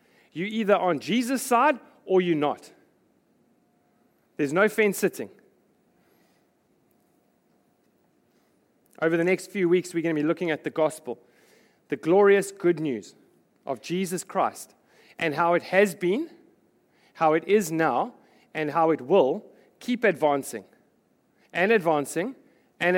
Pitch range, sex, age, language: 145-195 Hz, male, 40-59, English